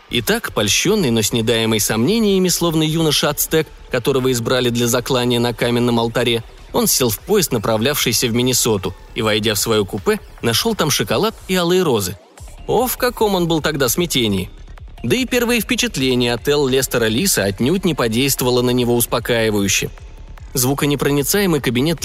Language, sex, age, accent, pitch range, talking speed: Russian, male, 20-39, native, 115-150 Hz, 150 wpm